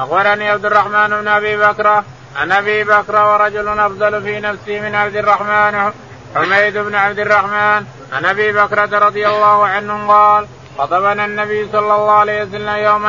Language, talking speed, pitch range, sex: Arabic, 155 wpm, 205-210 Hz, male